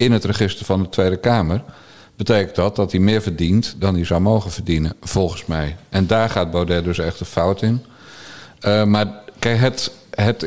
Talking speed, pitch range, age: 195 wpm, 95-120 Hz, 50-69